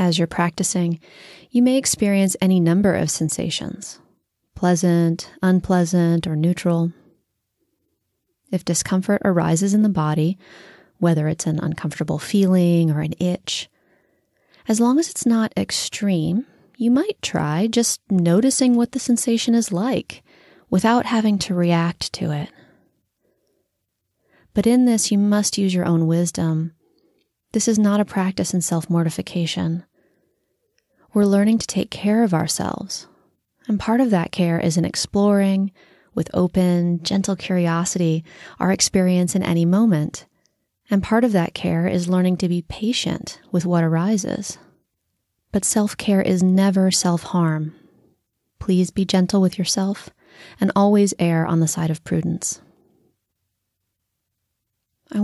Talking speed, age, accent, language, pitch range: 135 wpm, 30-49, American, English, 170-205 Hz